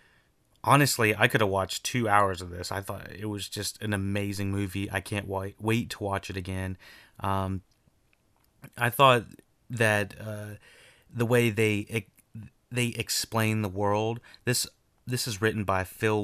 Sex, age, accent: male, 30-49, American